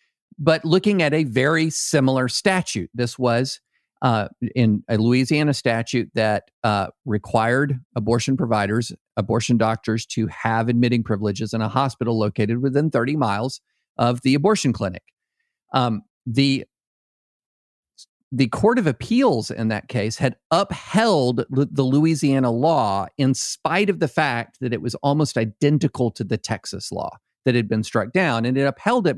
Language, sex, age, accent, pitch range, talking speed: English, male, 50-69, American, 115-150 Hz, 150 wpm